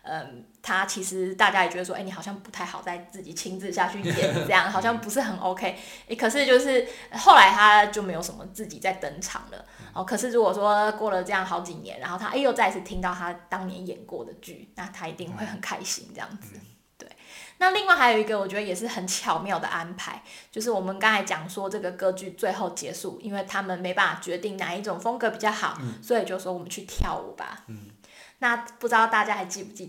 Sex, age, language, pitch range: female, 20-39, Chinese, 185-230 Hz